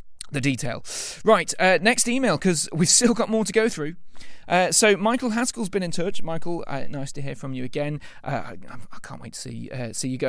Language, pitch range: English, 130-170 Hz